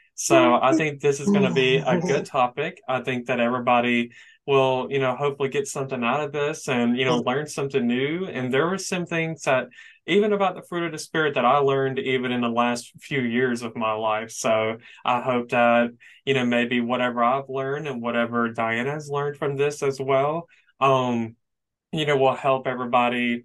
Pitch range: 120-140 Hz